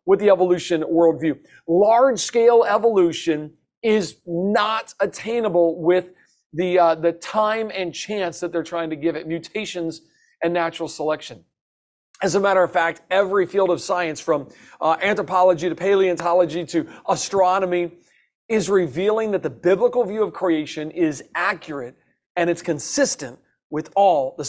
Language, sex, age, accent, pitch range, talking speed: English, male, 40-59, American, 165-210 Hz, 145 wpm